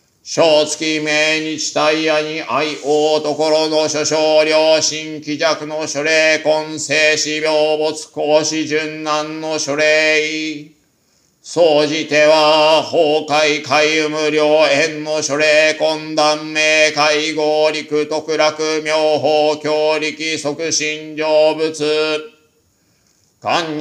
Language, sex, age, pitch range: Japanese, male, 50-69, 150-155 Hz